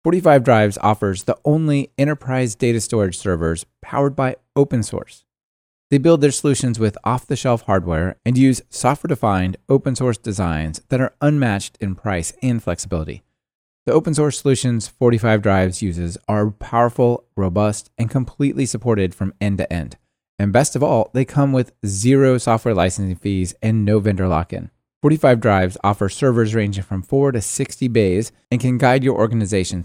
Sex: male